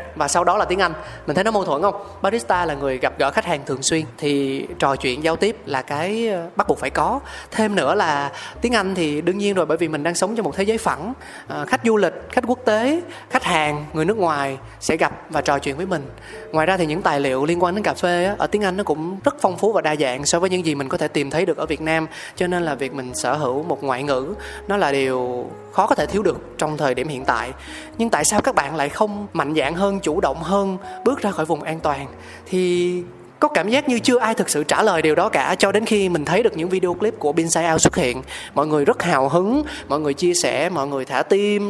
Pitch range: 150-205 Hz